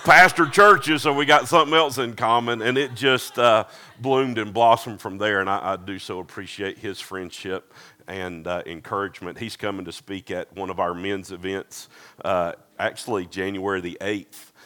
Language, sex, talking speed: English, male, 185 wpm